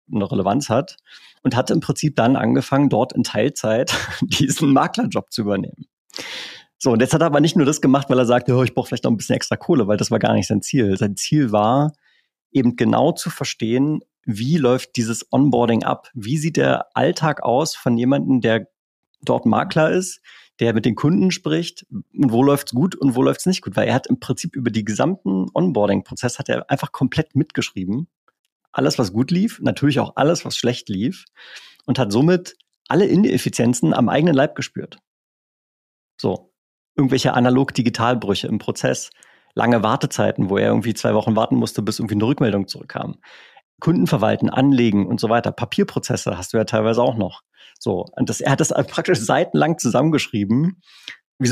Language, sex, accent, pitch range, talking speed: German, male, German, 115-145 Hz, 185 wpm